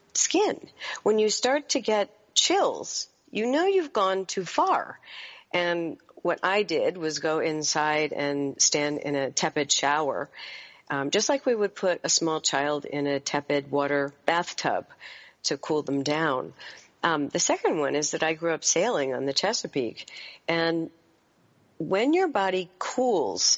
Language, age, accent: English, 50-69, American